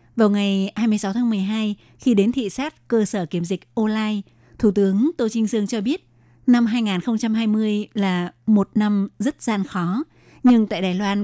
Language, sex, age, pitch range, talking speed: Vietnamese, female, 20-39, 190-230 Hz, 175 wpm